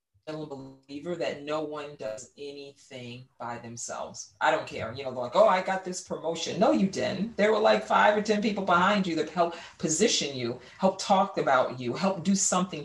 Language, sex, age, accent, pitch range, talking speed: English, female, 40-59, American, 135-170 Hz, 205 wpm